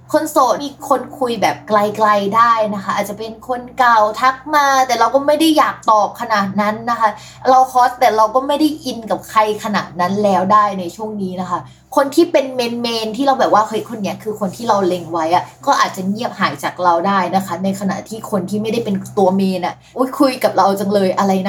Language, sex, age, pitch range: Thai, female, 20-39, 195-255 Hz